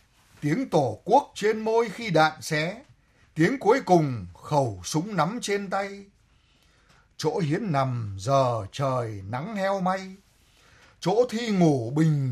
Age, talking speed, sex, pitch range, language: 60-79, 135 wpm, male, 140-200 Hz, Vietnamese